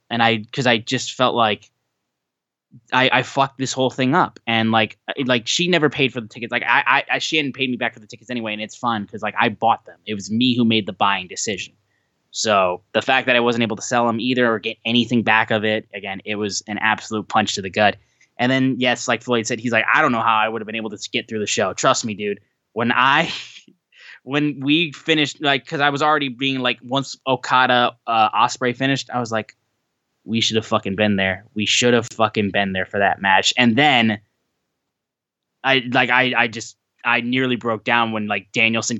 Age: 10-29